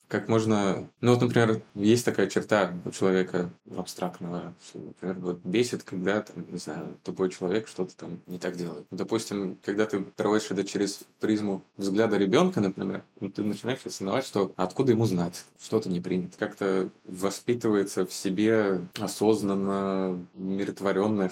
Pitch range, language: 95-105 Hz, Russian